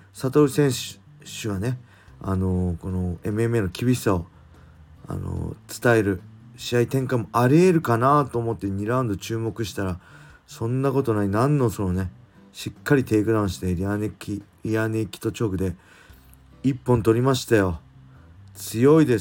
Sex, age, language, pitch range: male, 40-59, Japanese, 95-125 Hz